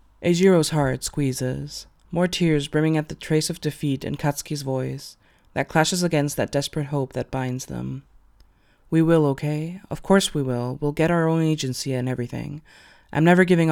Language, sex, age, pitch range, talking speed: English, female, 20-39, 130-160 Hz, 180 wpm